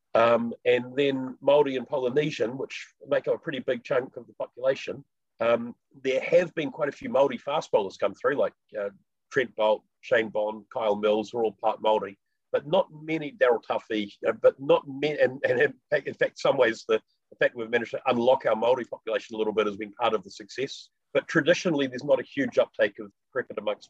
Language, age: English, 40-59